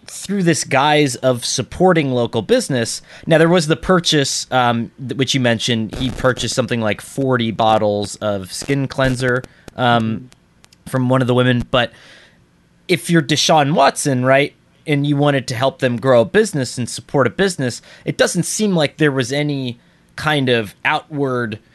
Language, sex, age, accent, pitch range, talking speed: English, male, 20-39, American, 120-150 Hz, 165 wpm